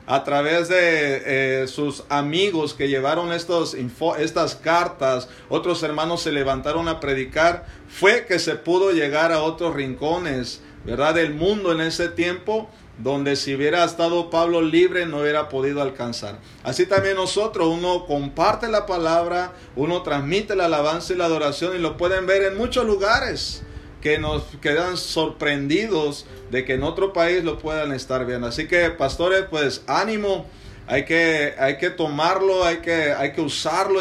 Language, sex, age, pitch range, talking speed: Spanish, male, 50-69, 140-175 Hz, 155 wpm